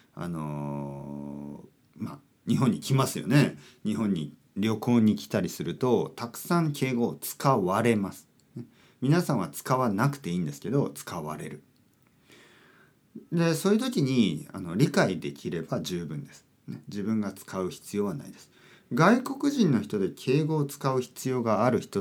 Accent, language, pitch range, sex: native, Japanese, 105-165 Hz, male